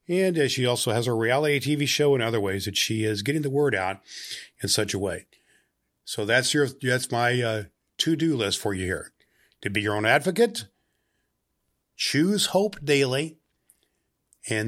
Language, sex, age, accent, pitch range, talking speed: English, male, 50-69, American, 110-140 Hz, 175 wpm